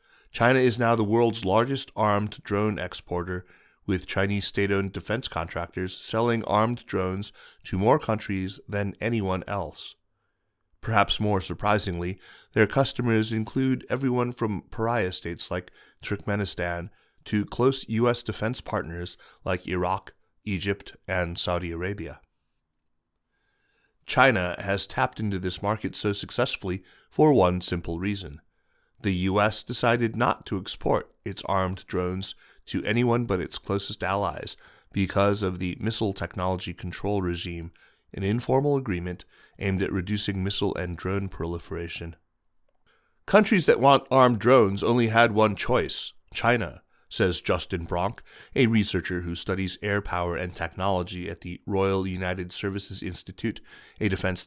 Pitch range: 90-110 Hz